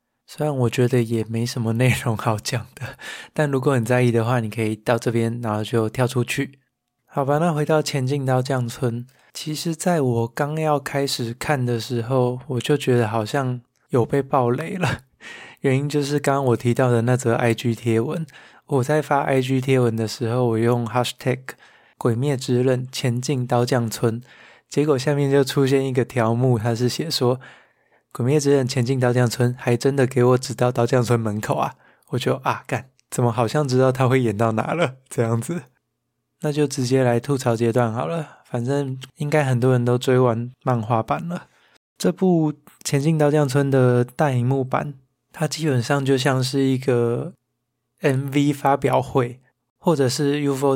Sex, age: male, 20-39